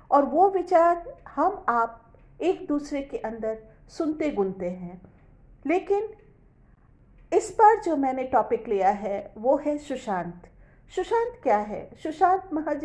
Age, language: 50-69, Hindi